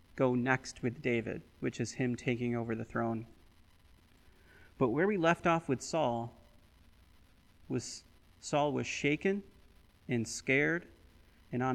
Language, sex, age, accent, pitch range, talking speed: English, male, 30-49, American, 90-135 Hz, 135 wpm